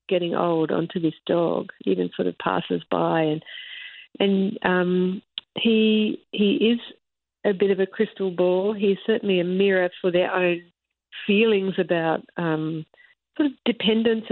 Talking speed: 145 wpm